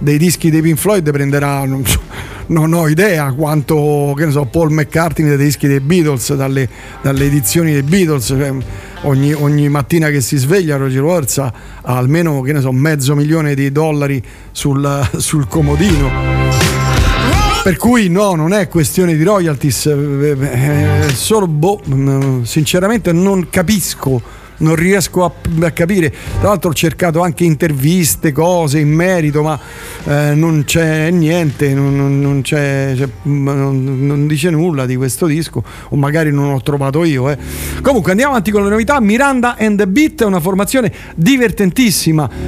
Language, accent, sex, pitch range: Italian, native, male, 140-185 Hz